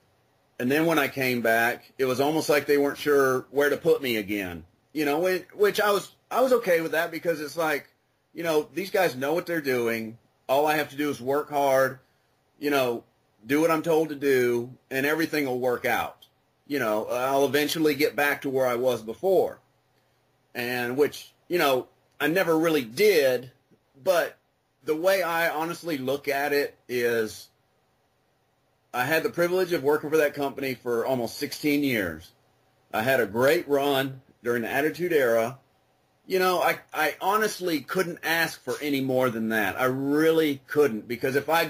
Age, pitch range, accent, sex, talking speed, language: 30-49, 125-160 Hz, American, male, 185 wpm, English